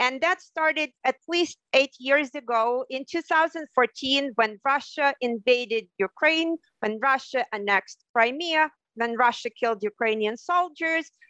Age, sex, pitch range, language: 40-59, female, 235-295 Hz, English